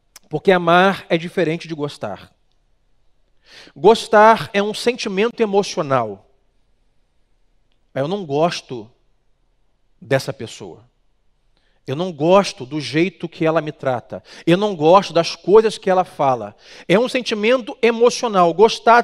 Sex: male